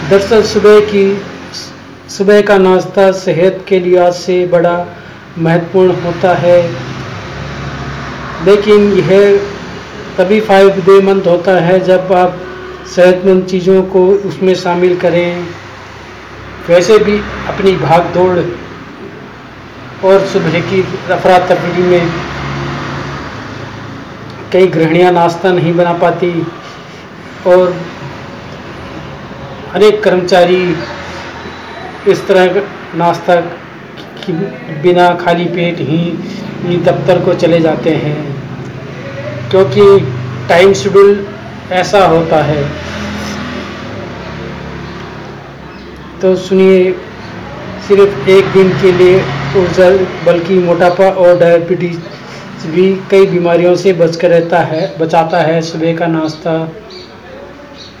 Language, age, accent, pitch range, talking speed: Hindi, 40-59, native, 170-190 Hz, 95 wpm